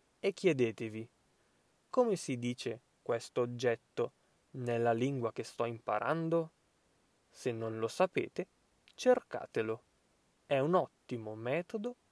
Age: 20-39